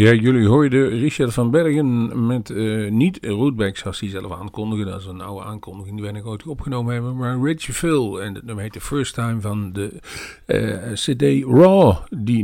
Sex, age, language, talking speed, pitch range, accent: male, 50-69, Dutch, 200 wpm, 105-130 Hz, Dutch